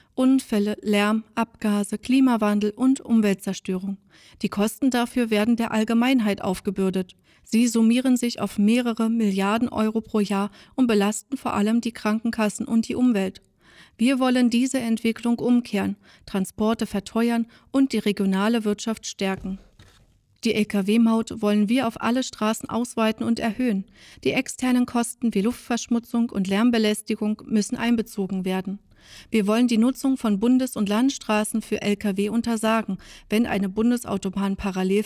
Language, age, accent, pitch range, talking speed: German, 40-59, German, 205-235 Hz, 135 wpm